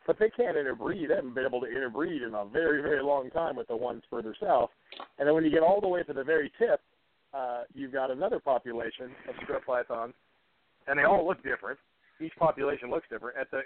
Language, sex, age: English, male, 40-59